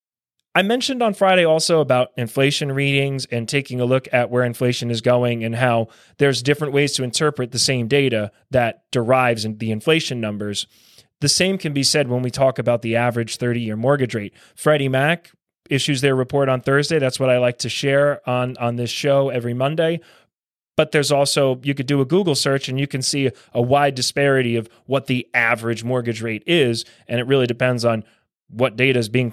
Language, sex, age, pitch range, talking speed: English, male, 20-39, 120-140 Hz, 200 wpm